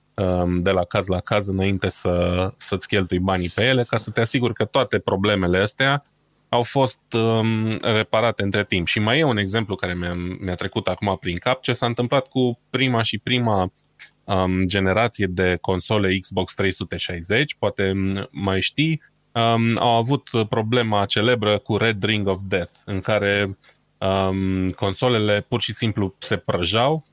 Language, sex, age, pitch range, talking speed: Romanian, male, 20-39, 95-120 Hz, 160 wpm